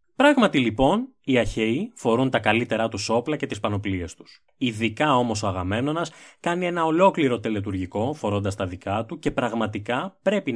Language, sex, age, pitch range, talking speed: Greek, male, 20-39, 105-155 Hz, 160 wpm